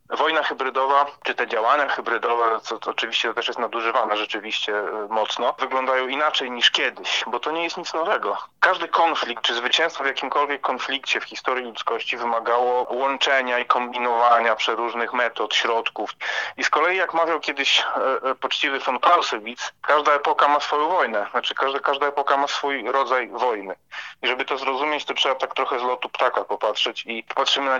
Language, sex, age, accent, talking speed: Polish, male, 30-49, native, 165 wpm